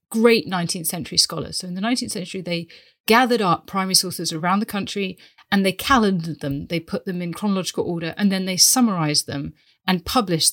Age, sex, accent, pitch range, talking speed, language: 30-49, female, British, 175-210 Hz, 195 wpm, English